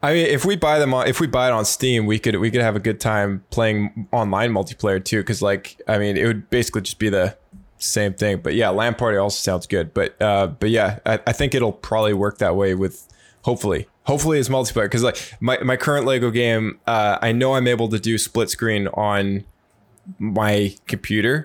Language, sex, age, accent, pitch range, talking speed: English, male, 20-39, American, 100-120 Hz, 225 wpm